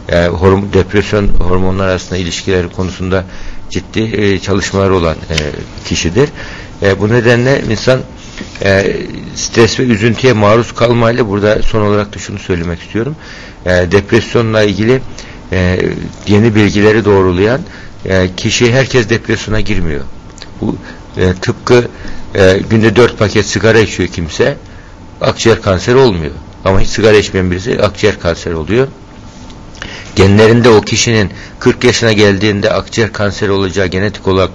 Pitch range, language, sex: 95-115 Hz, Turkish, male